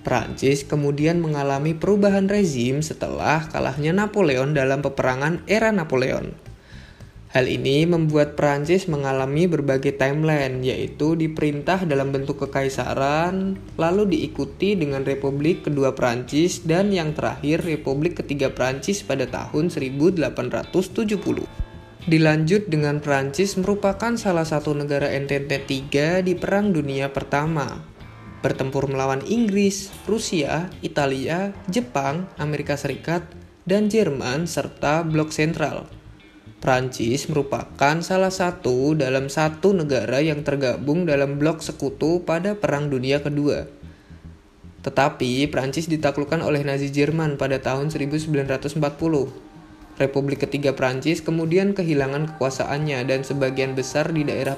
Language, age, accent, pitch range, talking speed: Indonesian, 20-39, native, 135-165 Hz, 110 wpm